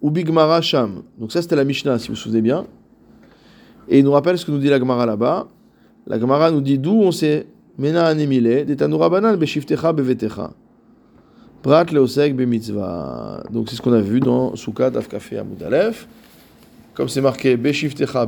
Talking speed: 180 wpm